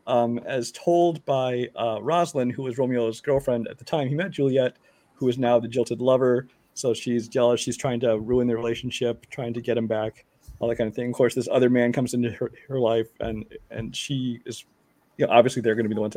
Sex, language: male, English